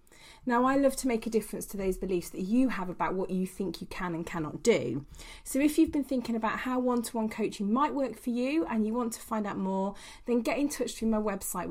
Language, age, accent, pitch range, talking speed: English, 40-59, British, 190-245 Hz, 250 wpm